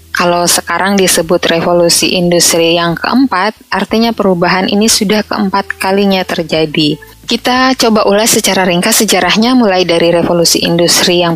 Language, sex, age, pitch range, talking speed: Indonesian, female, 20-39, 165-210 Hz, 130 wpm